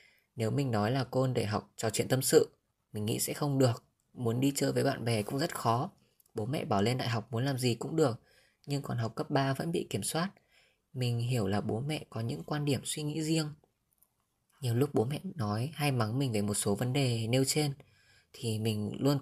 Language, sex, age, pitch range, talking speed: Vietnamese, female, 10-29, 115-145 Hz, 235 wpm